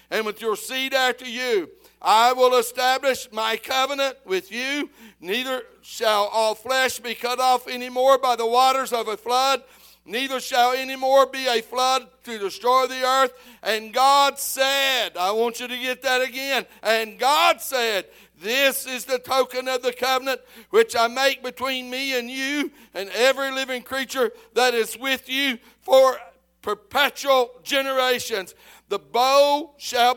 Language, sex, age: English, male, 60-79